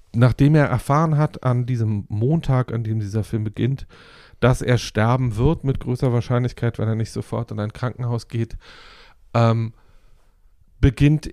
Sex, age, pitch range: male, 40-59, 105-125 Hz